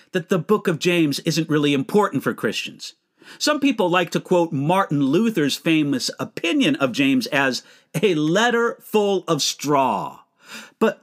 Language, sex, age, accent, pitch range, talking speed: English, male, 50-69, American, 150-210 Hz, 150 wpm